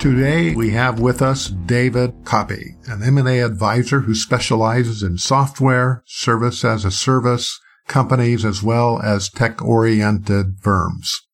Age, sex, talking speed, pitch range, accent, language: 50-69, male, 125 wpm, 105-130 Hz, American, English